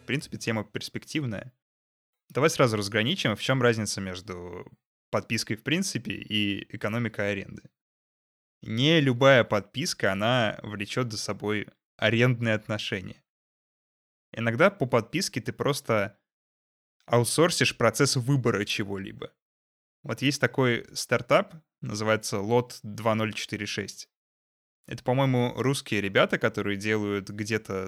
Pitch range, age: 105-125 Hz, 20-39